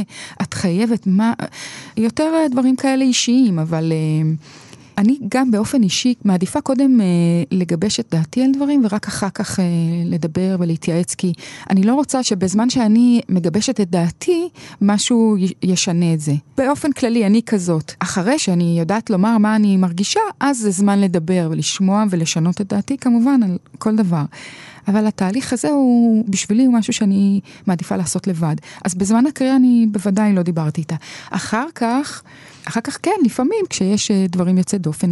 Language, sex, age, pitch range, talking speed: Hebrew, female, 30-49, 170-230 Hz, 150 wpm